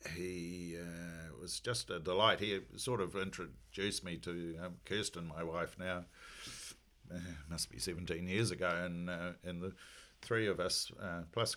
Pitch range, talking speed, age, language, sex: 85-100 Hz, 165 wpm, 50-69, English, male